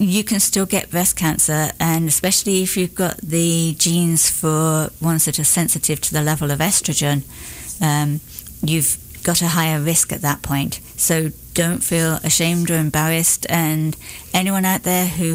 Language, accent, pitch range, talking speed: English, British, 150-175 Hz, 170 wpm